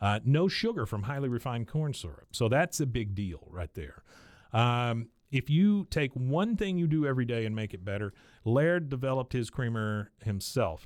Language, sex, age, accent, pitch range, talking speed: English, male, 40-59, American, 105-130 Hz, 190 wpm